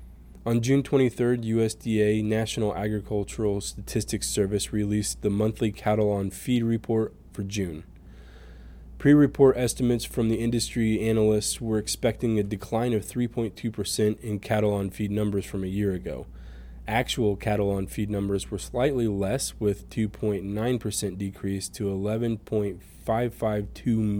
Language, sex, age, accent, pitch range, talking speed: English, male, 20-39, American, 95-110 Hz, 125 wpm